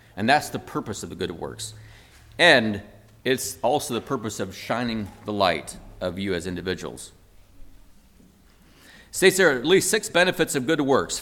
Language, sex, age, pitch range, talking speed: English, male, 40-59, 110-160 Hz, 170 wpm